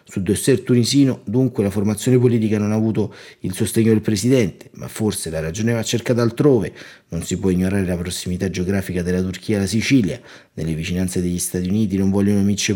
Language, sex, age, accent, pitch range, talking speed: Italian, male, 30-49, native, 90-120 Hz, 190 wpm